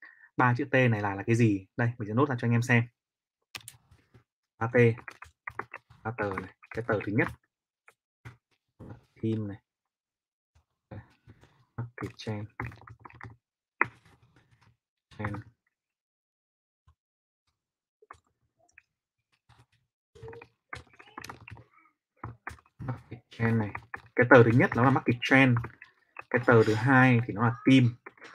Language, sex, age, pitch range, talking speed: Vietnamese, male, 20-39, 110-130 Hz, 95 wpm